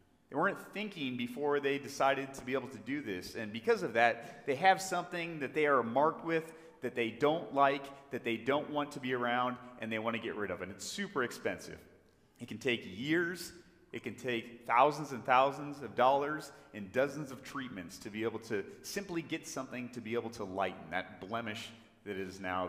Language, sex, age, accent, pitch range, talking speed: English, male, 30-49, American, 95-130 Hz, 210 wpm